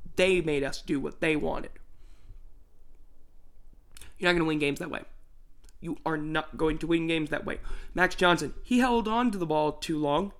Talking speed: 195 wpm